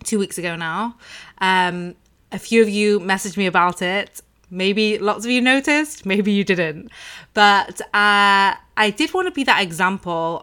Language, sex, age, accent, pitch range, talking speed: English, female, 20-39, British, 170-205 Hz, 175 wpm